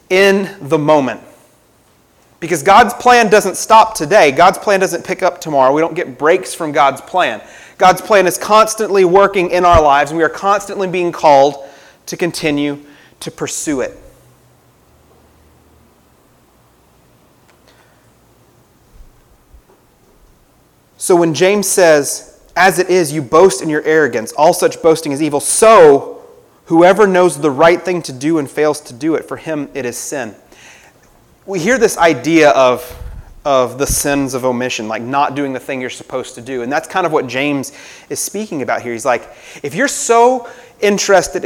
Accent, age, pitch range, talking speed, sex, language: American, 30-49, 135-185 Hz, 160 wpm, male, English